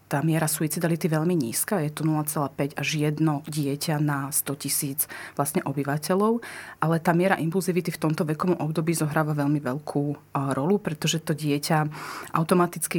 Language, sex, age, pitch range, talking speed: Slovak, female, 30-49, 150-175 Hz, 150 wpm